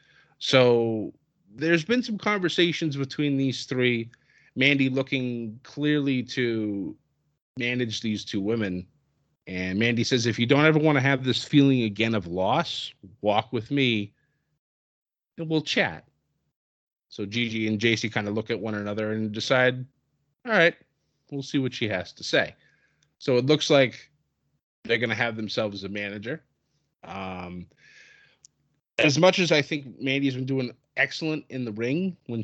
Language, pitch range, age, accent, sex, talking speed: English, 110-150 Hz, 30-49, American, male, 155 wpm